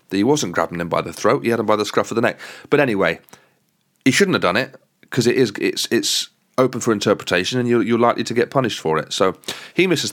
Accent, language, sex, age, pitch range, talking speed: British, English, male, 30-49, 90-115 Hz, 255 wpm